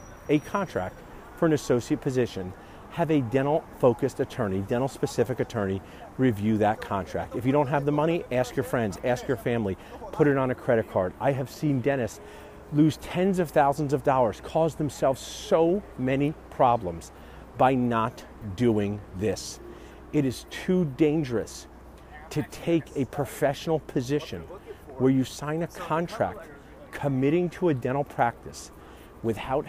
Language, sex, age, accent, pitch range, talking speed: English, male, 50-69, American, 105-150 Hz, 150 wpm